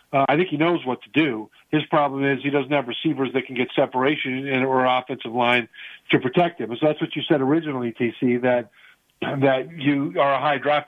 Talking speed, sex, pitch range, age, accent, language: 215 wpm, male, 130-155 Hz, 50-69, American, English